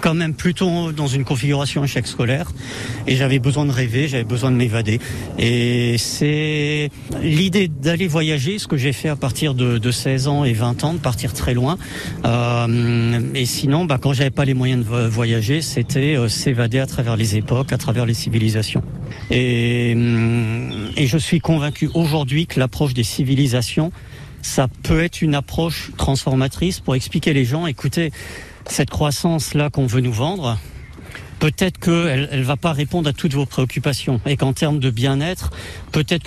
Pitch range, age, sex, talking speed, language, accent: 120-150 Hz, 50-69, male, 170 wpm, French, French